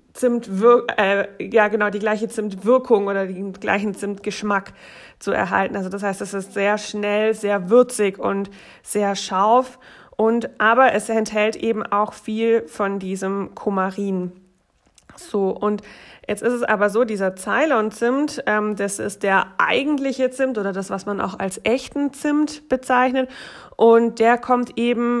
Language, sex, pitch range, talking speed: German, female, 200-235 Hz, 150 wpm